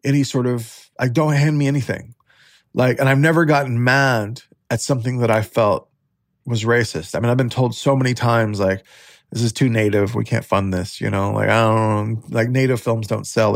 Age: 20-39